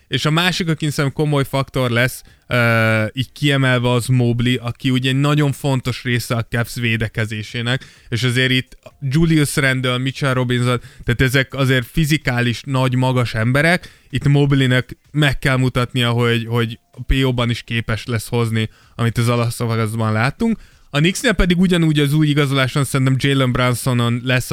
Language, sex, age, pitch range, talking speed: Hungarian, male, 20-39, 120-140 Hz, 160 wpm